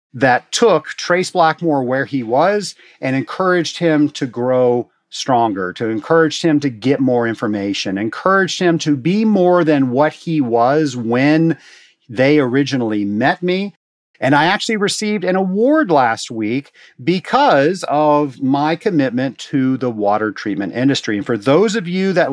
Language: English